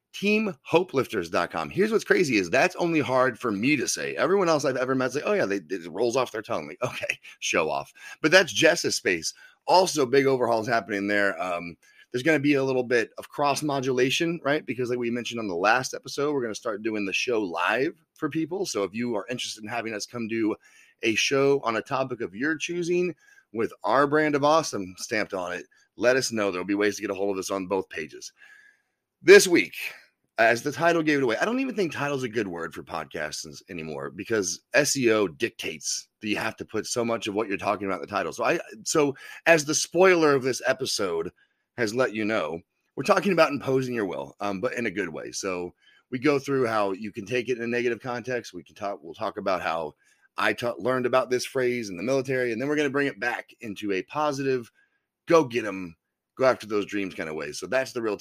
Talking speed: 230 wpm